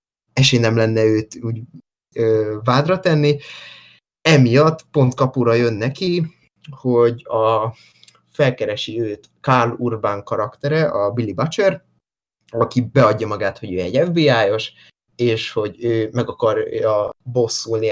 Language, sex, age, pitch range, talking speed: Hungarian, male, 20-39, 115-145 Hz, 115 wpm